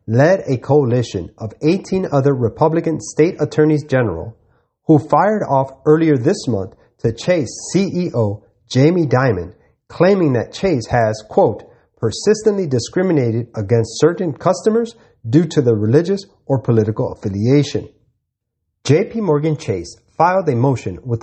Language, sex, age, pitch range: English, male, 30-49, 115-155 Hz